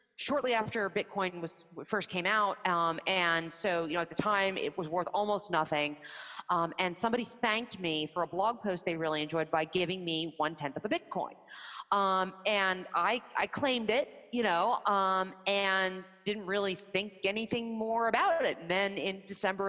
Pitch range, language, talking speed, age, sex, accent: 170-220 Hz, English, 185 wpm, 30-49, female, American